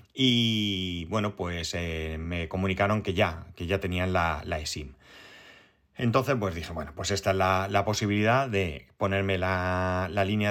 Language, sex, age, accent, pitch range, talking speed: Spanish, male, 30-49, Spanish, 95-125 Hz, 165 wpm